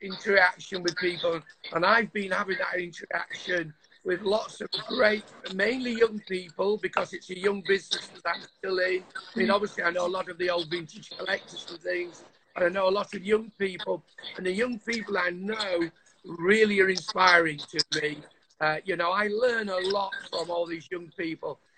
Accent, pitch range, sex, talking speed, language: British, 180-205 Hz, male, 190 wpm, English